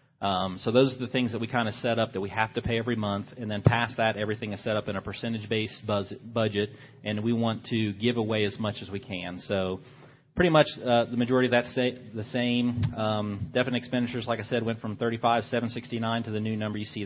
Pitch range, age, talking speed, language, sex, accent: 105-120 Hz, 30-49, 245 wpm, English, male, American